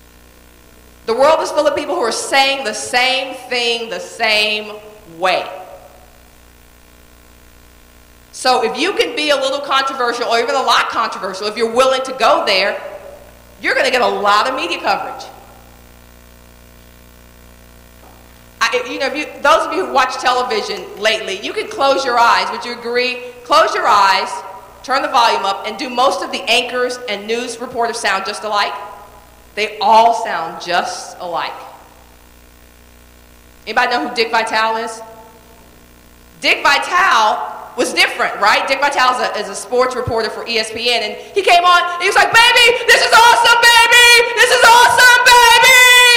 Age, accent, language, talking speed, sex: 40-59, American, English, 160 wpm, female